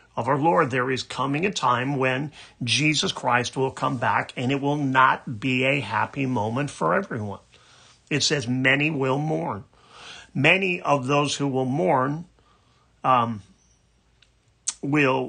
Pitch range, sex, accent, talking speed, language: 125-145 Hz, male, American, 145 wpm, English